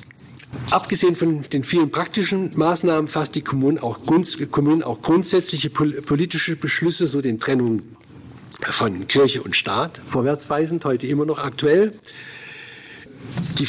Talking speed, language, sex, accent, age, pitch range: 115 wpm, German, male, German, 50-69, 130-165 Hz